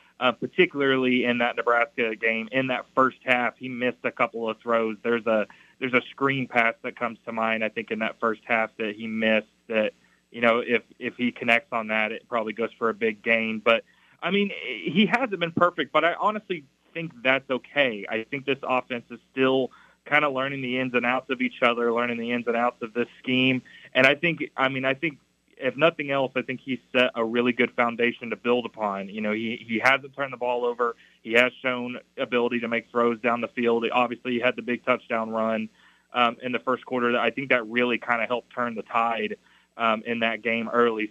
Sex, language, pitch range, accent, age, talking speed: male, English, 115-130 Hz, American, 20-39, 230 wpm